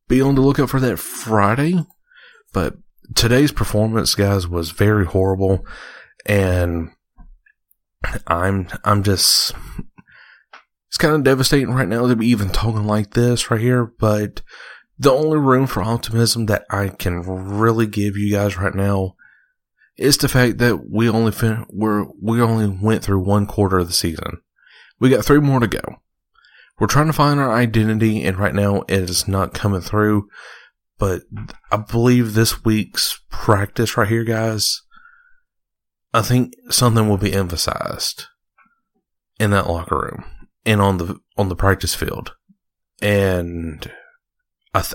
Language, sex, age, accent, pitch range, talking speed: English, male, 30-49, American, 95-120 Hz, 150 wpm